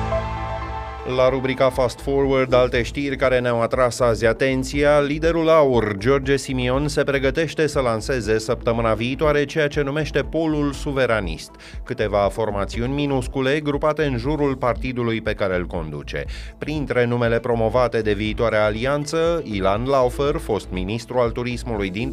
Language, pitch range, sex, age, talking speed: Romanian, 105-140 Hz, male, 30-49, 135 wpm